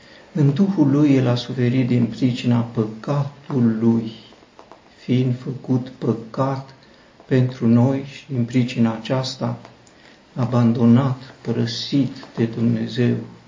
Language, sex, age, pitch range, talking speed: Romanian, male, 60-79, 115-135 Hz, 100 wpm